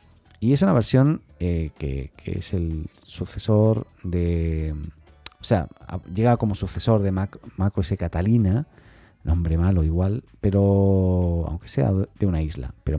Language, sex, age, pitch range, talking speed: Spanish, male, 40-59, 85-110 Hz, 145 wpm